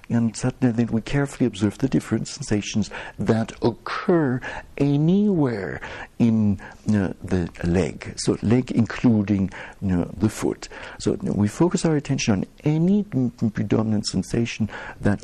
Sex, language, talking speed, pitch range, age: male, English, 125 wpm, 95-125 Hz, 60-79